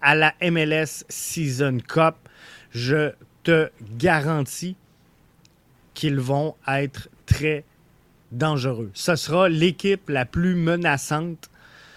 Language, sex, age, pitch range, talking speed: French, male, 30-49, 140-175 Hz, 95 wpm